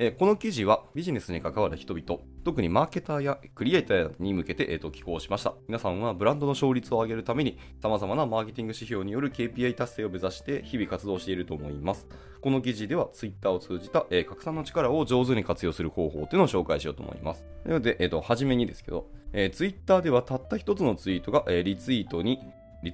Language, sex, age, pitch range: Japanese, male, 20-39, 90-130 Hz